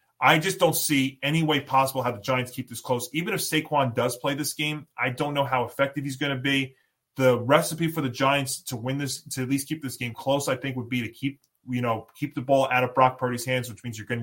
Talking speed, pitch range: 270 wpm, 125-145 Hz